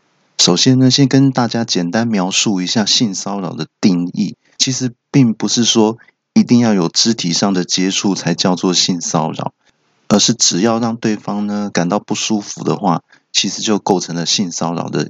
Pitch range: 95-120 Hz